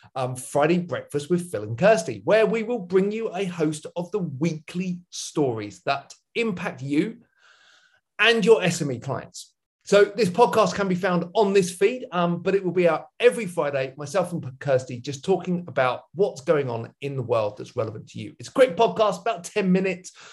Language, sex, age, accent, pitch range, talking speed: English, male, 40-59, British, 140-205 Hz, 190 wpm